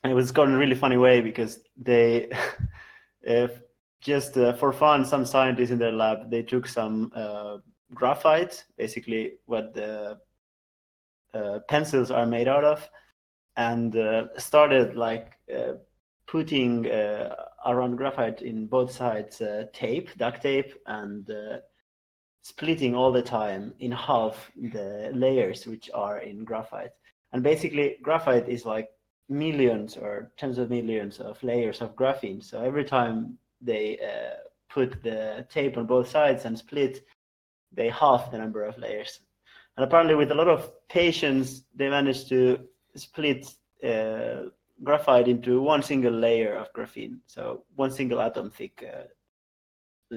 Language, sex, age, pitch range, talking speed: English, male, 30-49, 115-140 Hz, 145 wpm